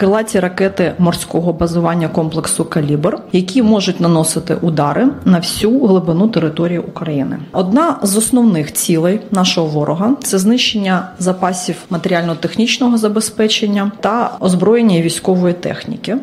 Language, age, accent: Ukrainian, 30-49, native